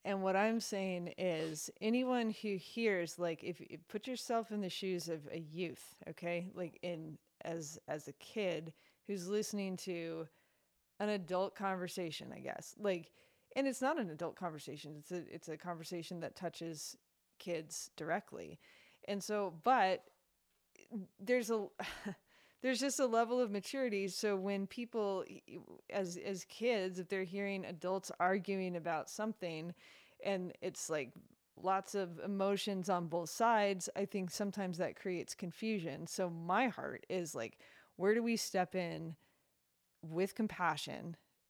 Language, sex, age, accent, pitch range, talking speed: English, female, 20-39, American, 170-205 Hz, 145 wpm